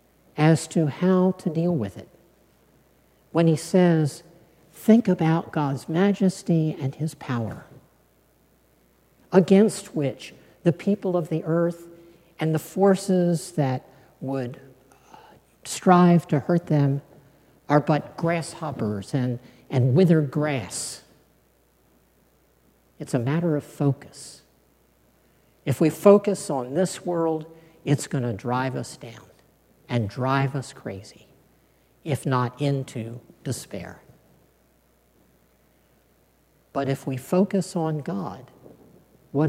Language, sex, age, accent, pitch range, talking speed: English, male, 50-69, American, 135-175 Hz, 110 wpm